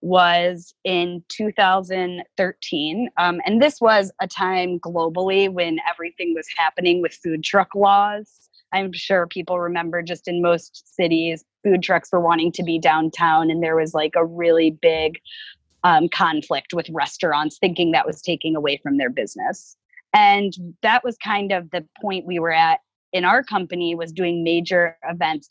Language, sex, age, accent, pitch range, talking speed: English, female, 20-39, American, 165-190 Hz, 160 wpm